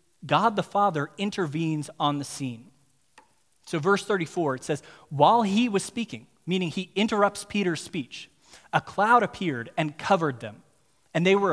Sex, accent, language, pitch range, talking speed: male, American, English, 130-180 Hz, 155 wpm